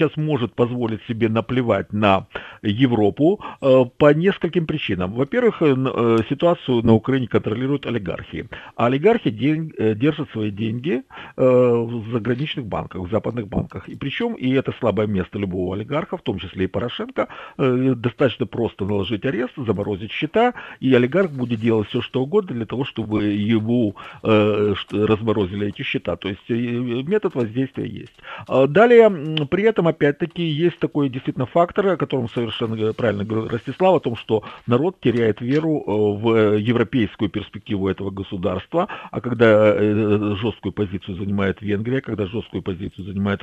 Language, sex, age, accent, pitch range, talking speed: Russian, male, 50-69, native, 105-135 Hz, 145 wpm